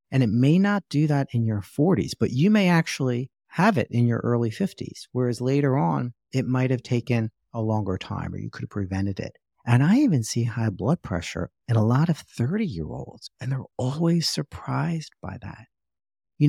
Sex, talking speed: male, 195 wpm